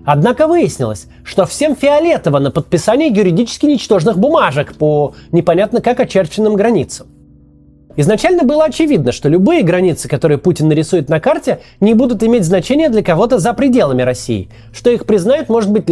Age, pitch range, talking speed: 30-49, 155-245 Hz, 150 wpm